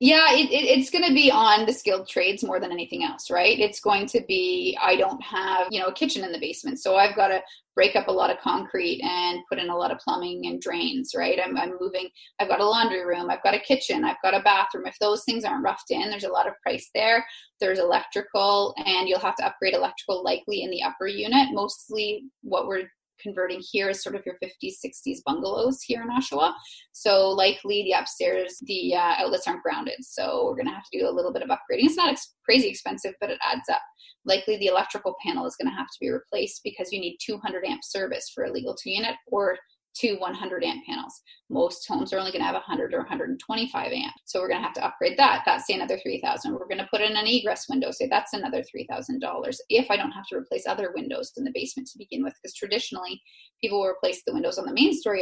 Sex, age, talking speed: female, 20-39, 240 wpm